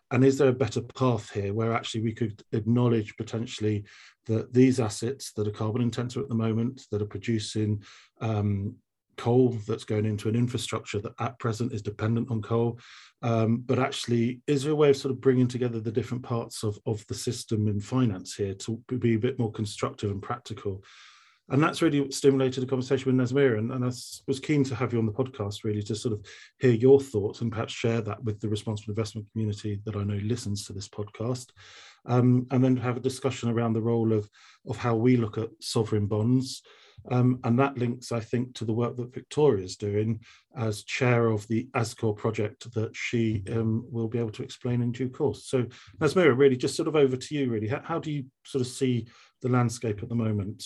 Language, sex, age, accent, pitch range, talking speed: English, male, 40-59, British, 110-125 Hz, 215 wpm